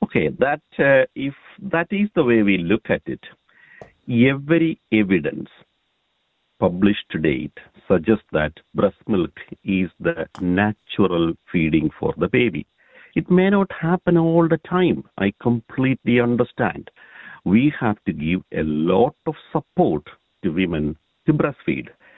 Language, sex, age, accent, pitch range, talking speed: English, male, 50-69, Indian, 105-155 Hz, 135 wpm